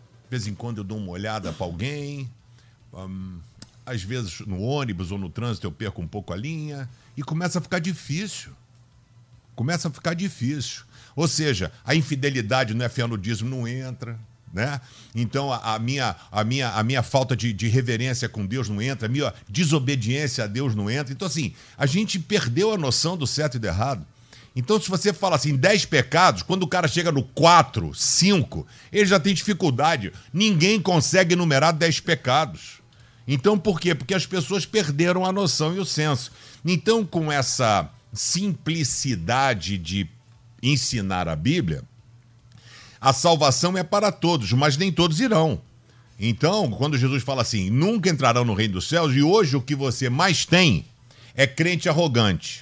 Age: 50-69